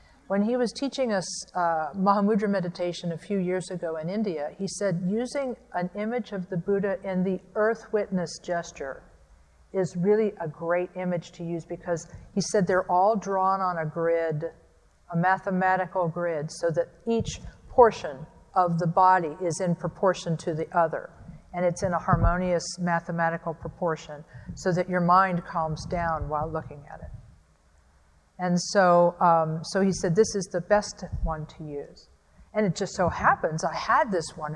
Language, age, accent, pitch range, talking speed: English, 50-69, American, 155-190 Hz, 170 wpm